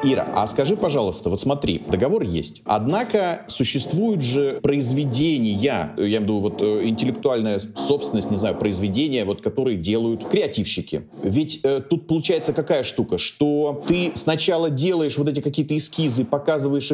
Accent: native